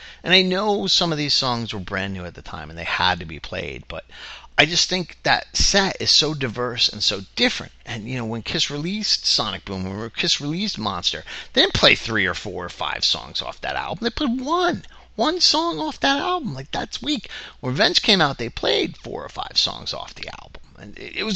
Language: English